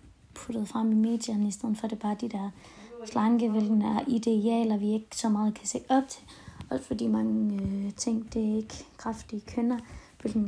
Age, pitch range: 20-39, 220-255 Hz